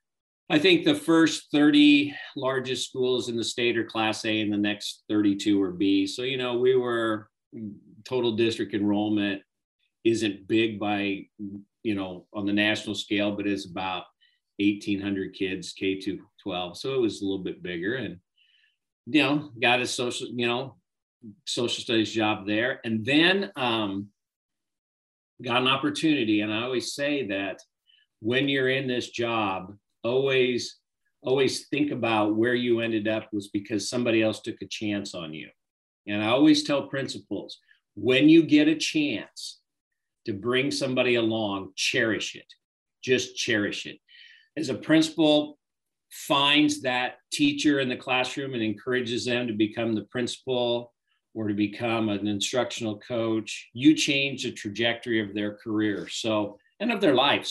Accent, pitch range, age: American, 105-140 Hz, 40-59